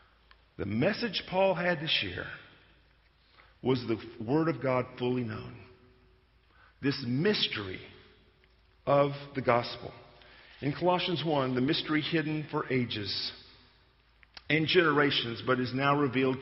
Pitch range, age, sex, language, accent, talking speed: 125-185 Hz, 50-69, male, English, American, 115 wpm